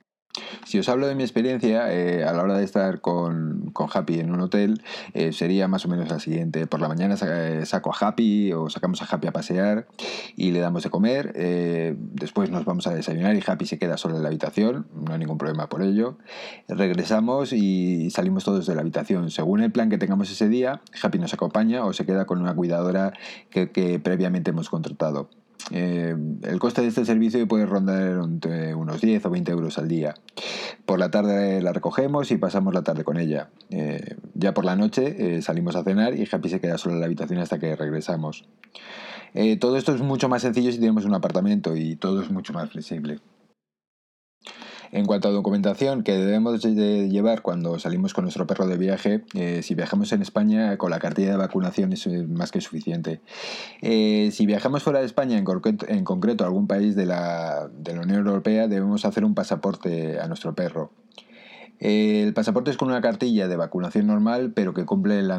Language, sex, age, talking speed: Spanish, male, 30-49, 200 wpm